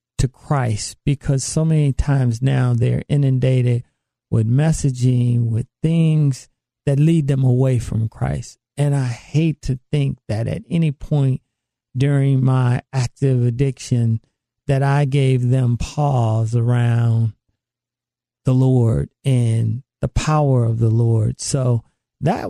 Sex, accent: male, American